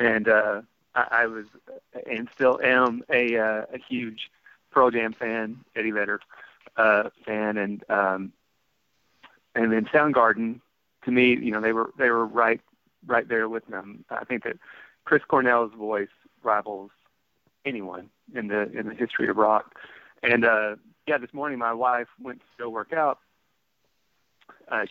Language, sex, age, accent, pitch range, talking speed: English, male, 30-49, American, 105-130 Hz, 155 wpm